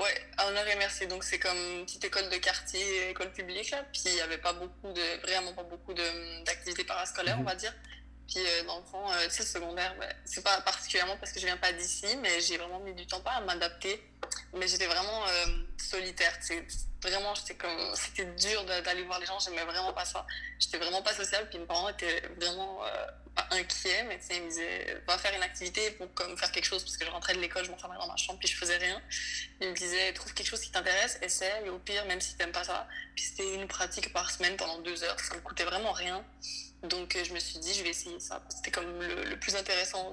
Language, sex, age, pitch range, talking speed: French, female, 20-39, 175-190 Hz, 245 wpm